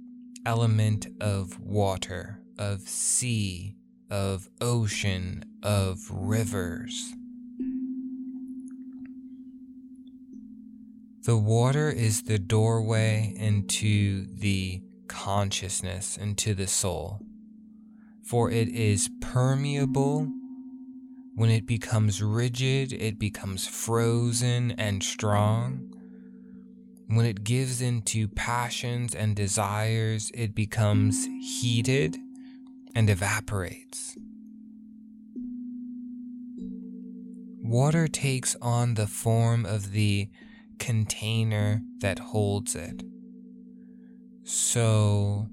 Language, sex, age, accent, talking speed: English, male, 20-39, American, 75 wpm